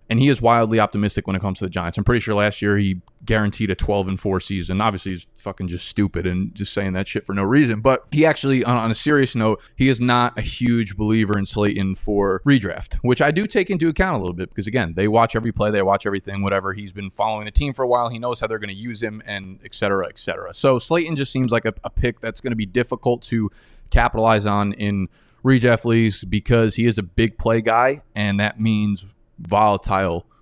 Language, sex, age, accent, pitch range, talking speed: English, male, 20-39, American, 100-120 Hz, 245 wpm